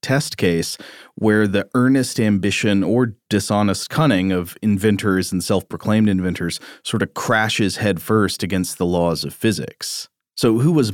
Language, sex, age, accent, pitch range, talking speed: English, male, 30-49, American, 90-110 Hz, 145 wpm